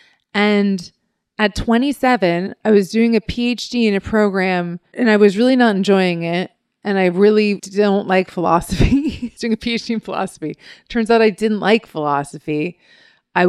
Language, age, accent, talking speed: English, 30-49, American, 160 wpm